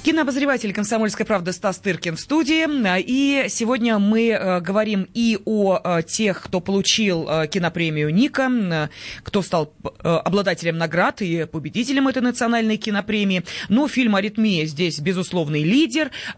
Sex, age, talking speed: female, 20-39, 125 wpm